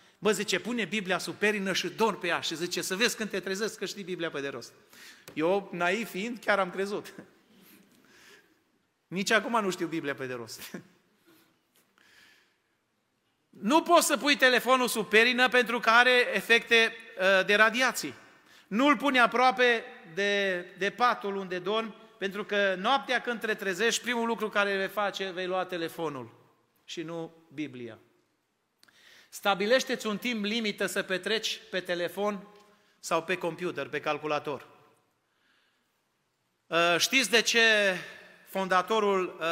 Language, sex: Romanian, male